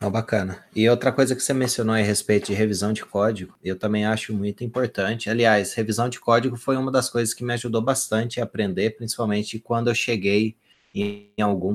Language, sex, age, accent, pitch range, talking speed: Portuguese, male, 20-39, Brazilian, 100-120 Hz, 205 wpm